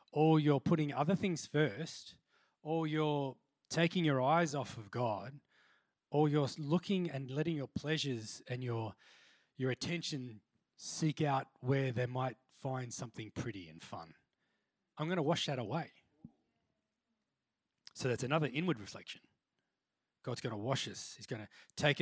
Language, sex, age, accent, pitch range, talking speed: English, male, 20-39, Australian, 120-160 Hz, 150 wpm